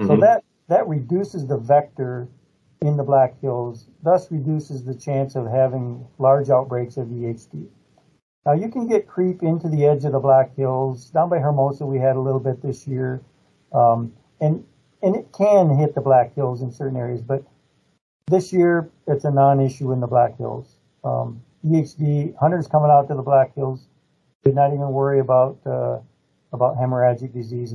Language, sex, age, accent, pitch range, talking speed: English, male, 50-69, American, 130-155 Hz, 175 wpm